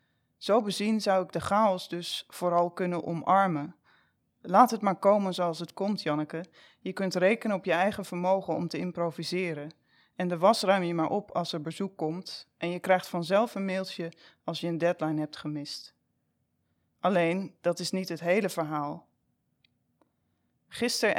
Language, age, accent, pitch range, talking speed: Dutch, 20-39, Dutch, 165-195 Hz, 165 wpm